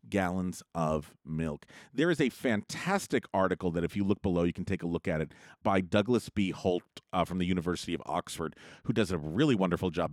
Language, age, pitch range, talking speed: English, 40-59, 90-150 Hz, 215 wpm